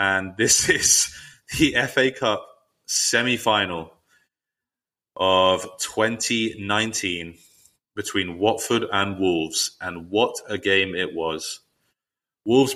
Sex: male